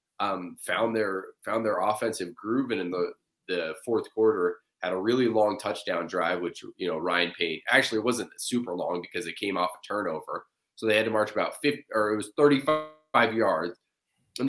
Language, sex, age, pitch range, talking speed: English, male, 20-39, 95-135 Hz, 205 wpm